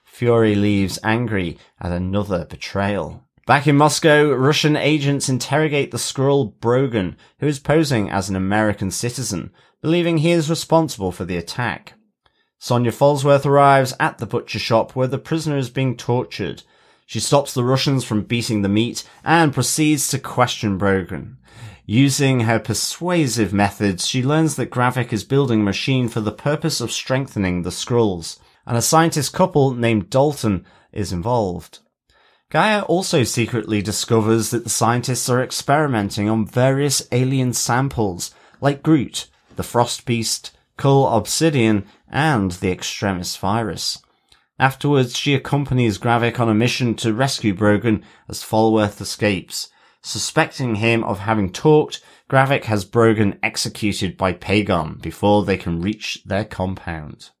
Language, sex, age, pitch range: English, male, 30-49, 105-140 Hz